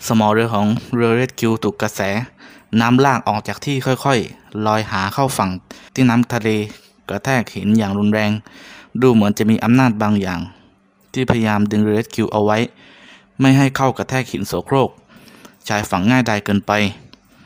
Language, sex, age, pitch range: Thai, male, 20-39, 105-125 Hz